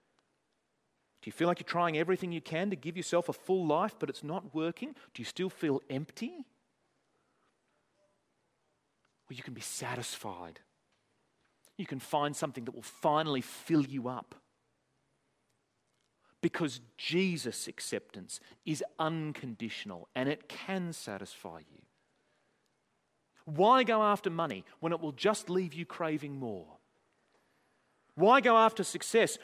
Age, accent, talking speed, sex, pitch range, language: 40-59, Australian, 135 wpm, male, 140-195 Hz, English